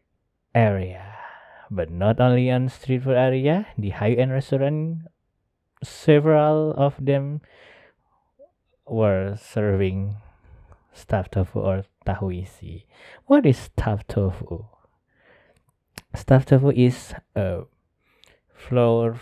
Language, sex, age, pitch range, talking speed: Indonesian, male, 20-39, 100-130 Hz, 95 wpm